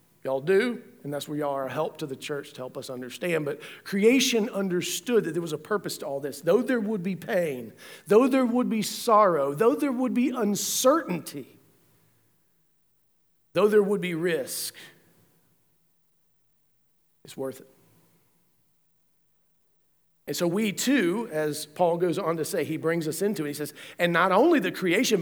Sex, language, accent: male, English, American